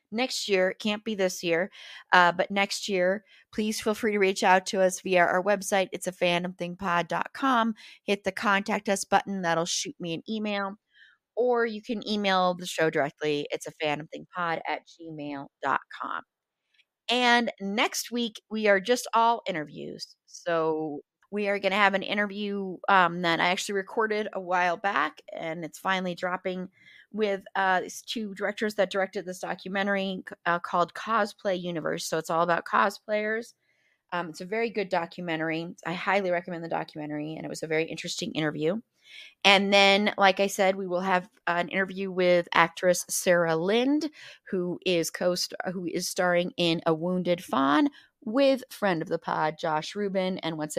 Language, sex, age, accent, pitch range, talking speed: English, female, 30-49, American, 170-205 Hz, 165 wpm